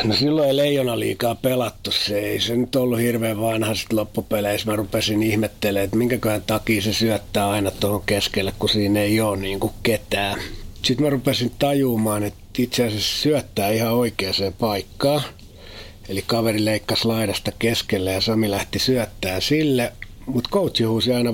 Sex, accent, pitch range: male, native, 100-120 Hz